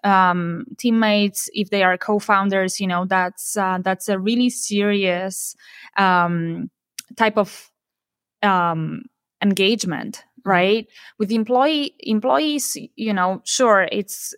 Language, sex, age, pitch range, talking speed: English, female, 20-39, 180-215 Hz, 115 wpm